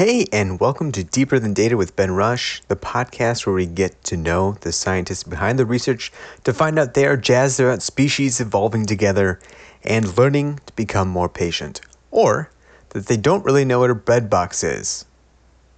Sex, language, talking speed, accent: male, English, 185 wpm, American